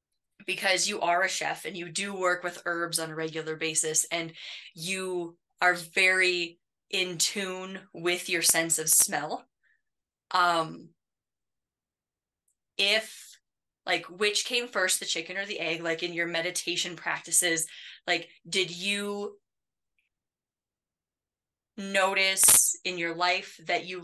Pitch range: 170-200 Hz